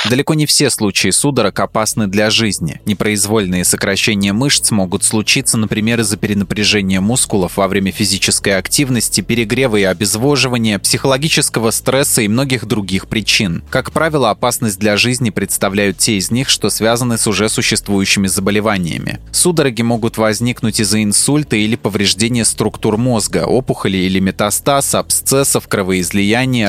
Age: 20-39